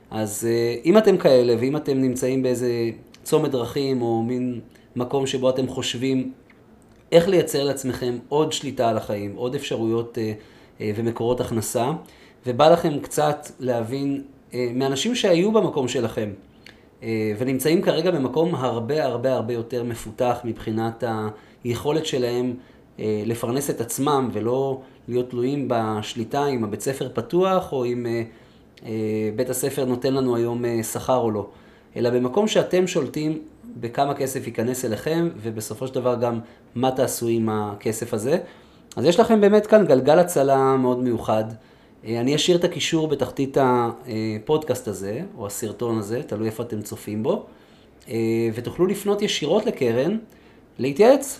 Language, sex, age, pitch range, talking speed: Hebrew, male, 30-49, 115-145 Hz, 130 wpm